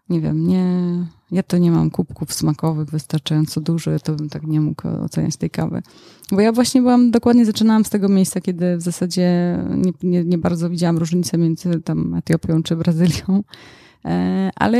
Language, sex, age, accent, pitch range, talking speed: Polish, female, 20-39, native, 165-200 Hz, 175 wpm